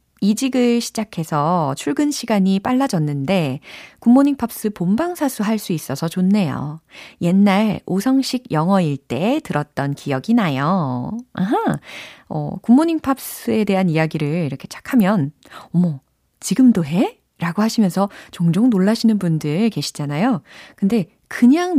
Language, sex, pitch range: Korean, female, 150-225 Hz